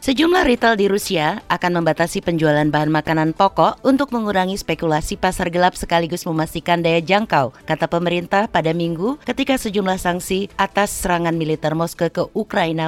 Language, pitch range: Indonesian, 160-195 Hz